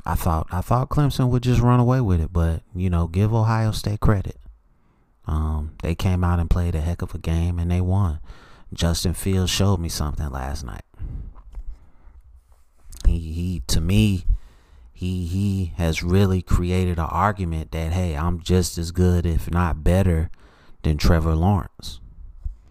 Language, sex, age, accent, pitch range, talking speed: English, male, 30-49, American, 80-95 Hz, 165 wpm